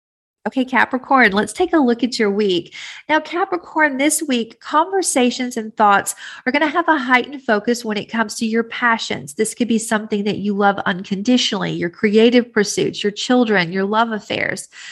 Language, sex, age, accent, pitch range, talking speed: English, female, 40-59, American, 190-240 Hz, 180 wpm